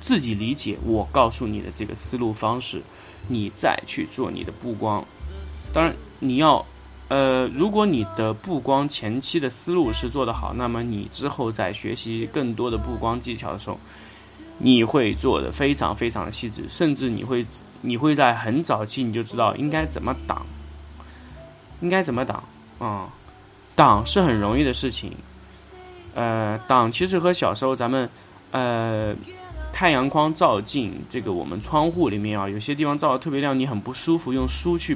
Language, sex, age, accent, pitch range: Chinese, male, 20-39, native, 105-140 Hz